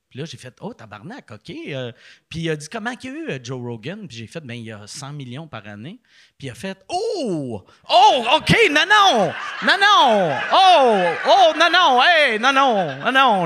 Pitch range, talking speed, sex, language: 140-230 Hz, 250 wpm, male, French